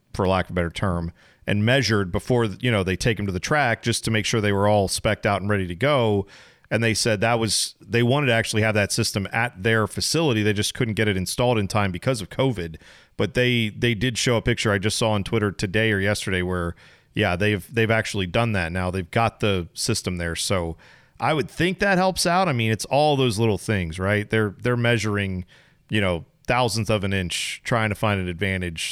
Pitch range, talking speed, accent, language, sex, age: 95-120 Hz, 235 wpm, American, English, male, 40-59